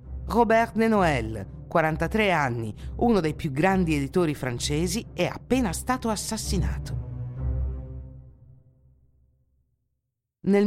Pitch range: 140-200 Hz